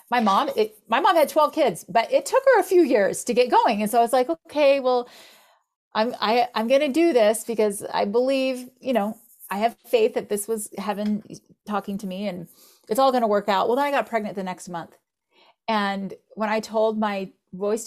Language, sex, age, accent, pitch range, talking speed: English, female, 30-49, American, 180-240 Hz, 225 wpm